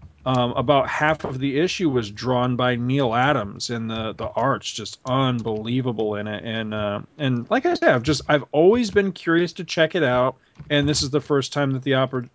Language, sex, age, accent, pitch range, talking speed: English, male, 40-59, American, 115-140 Hz, 220 wpm